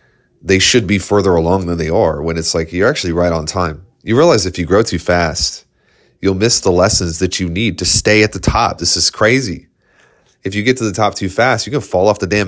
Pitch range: 85-100 Hz